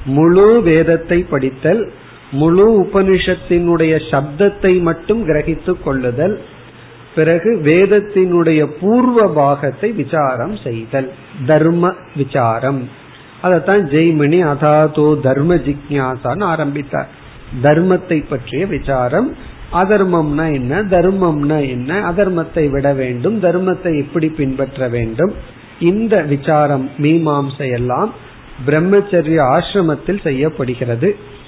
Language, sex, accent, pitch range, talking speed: Tamil, male, native, 140-180 Hz, 60 wpm